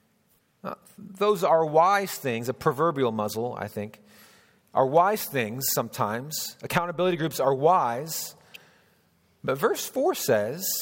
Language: English